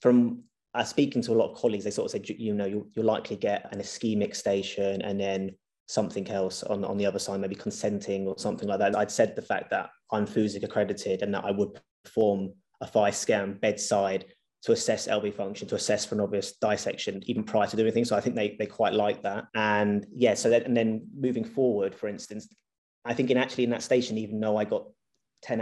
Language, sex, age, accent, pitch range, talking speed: English, male, 20-39, British, 100-120 Hz, 230 wpm